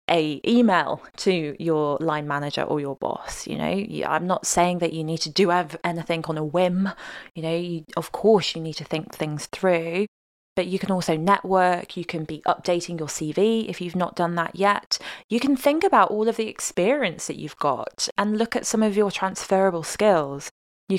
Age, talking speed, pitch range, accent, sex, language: 20-39, 205 wpm, 165-195 Hz, British, female, English